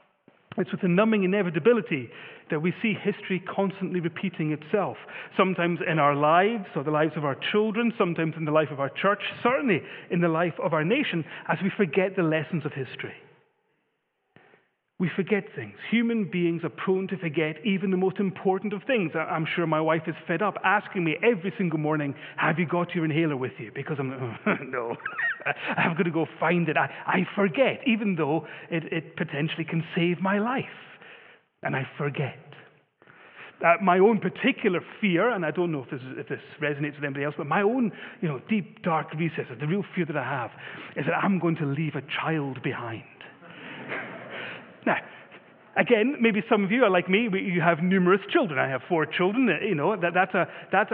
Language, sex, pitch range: English, male, 155-205 Hz